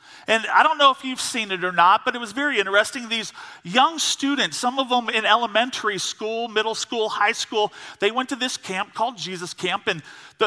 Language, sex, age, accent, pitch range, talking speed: English, male, 40-59, American, 220-275 Hz, 220 wpm